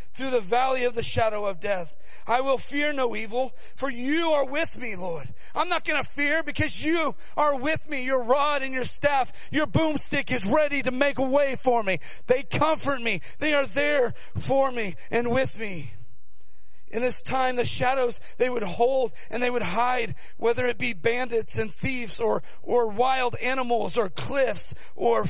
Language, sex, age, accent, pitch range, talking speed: English, male, 40-59, American, 225-275 Hz, 190 wpm